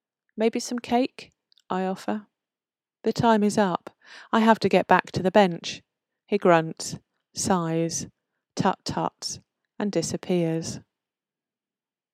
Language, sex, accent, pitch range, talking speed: English, female, British, 175-215 Hz, 115 wpm